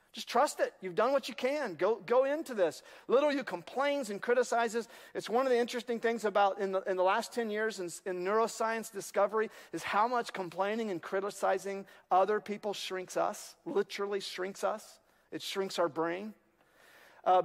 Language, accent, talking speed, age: English, American, 180 wpm, 40-59